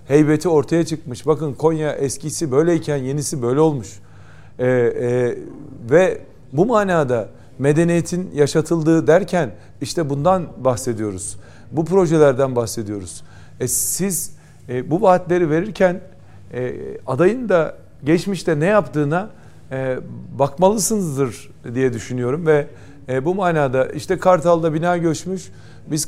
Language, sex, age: Turkish, male, 50-69